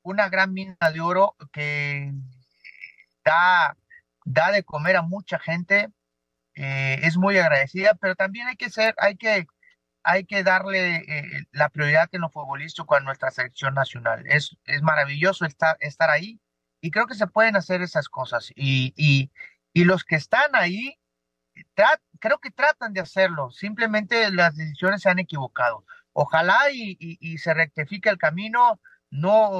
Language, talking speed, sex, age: Spanish, 160 wpm, male, 40-59